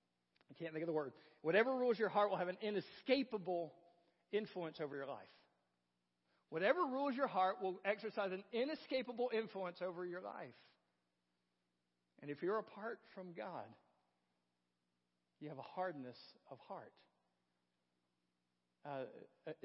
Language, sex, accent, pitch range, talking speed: English, male, American, 125-205 Hz, 130 wpm